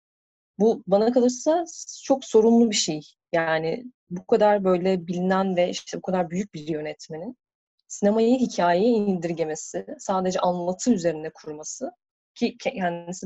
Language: Turkish